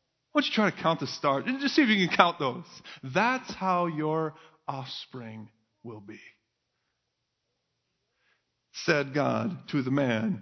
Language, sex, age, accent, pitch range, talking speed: English, male, 40-59, American, 135-220 Hz, 150 wpm